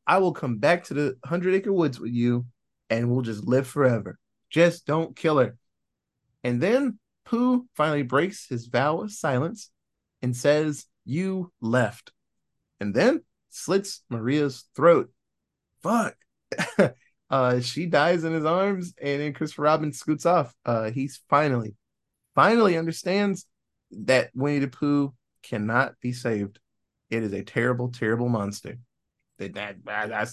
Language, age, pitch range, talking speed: English, 30-49, 120-165 Hz, 140 wpm